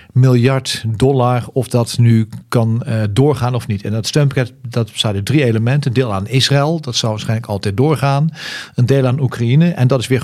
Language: Dutch